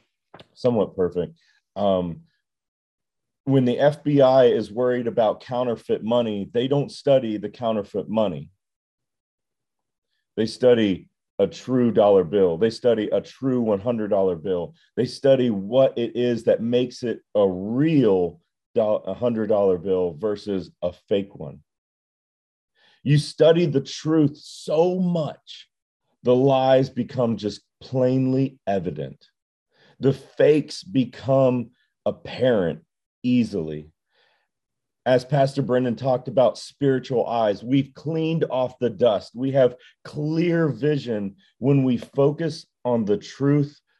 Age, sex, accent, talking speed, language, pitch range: 40-59, male, American, 115 wpm, English, 100-135 Hz